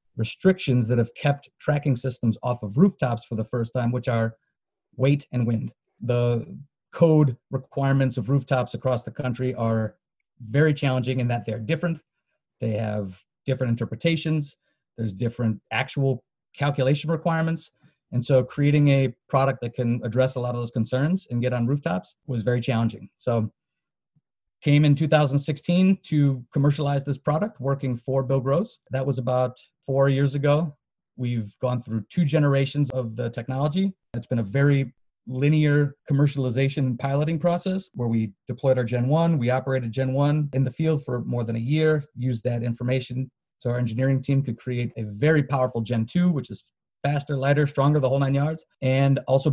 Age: 30-49